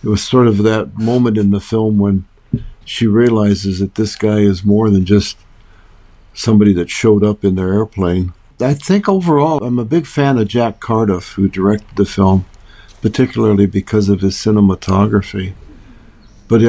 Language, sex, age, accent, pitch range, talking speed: English, male, 60-79, American, 100-110 Hz, 165 wpm